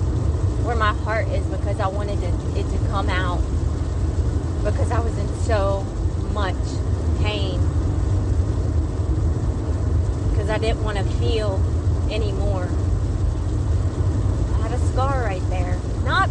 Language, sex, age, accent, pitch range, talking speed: English, female, 30-49, American, 90-100 Hz, 120 wpm